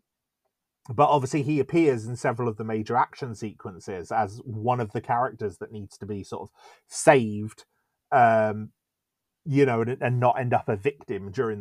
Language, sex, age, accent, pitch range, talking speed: English, male, 30-49, British, 115-155 Hz, 175 wpm